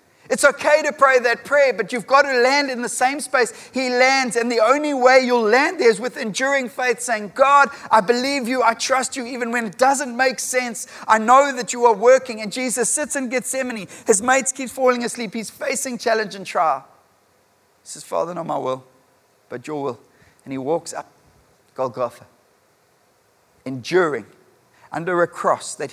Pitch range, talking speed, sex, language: 170-245 Hz, 190 wpm, male, English